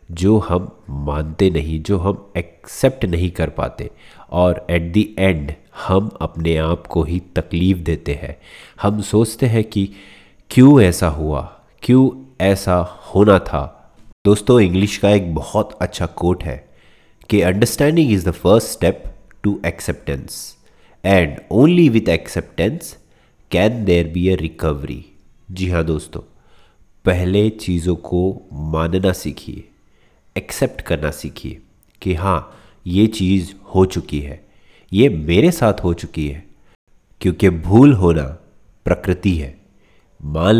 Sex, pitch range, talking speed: male, 80-100 Hz, 130 wpm